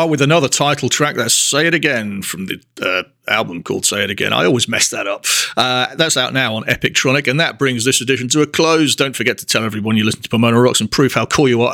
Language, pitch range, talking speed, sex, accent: English, 110-140 Hz, 260 wpm, male, British